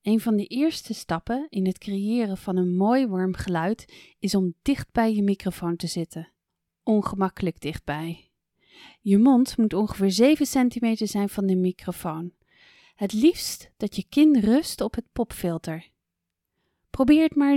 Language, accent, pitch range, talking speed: English, Dutch, 180-240 Hz, 155 wpm